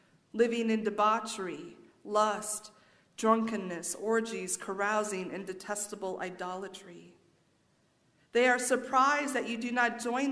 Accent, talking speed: American, 105 wpm